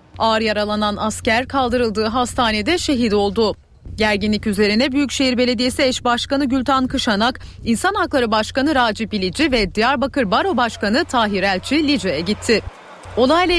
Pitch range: 210-280 Hz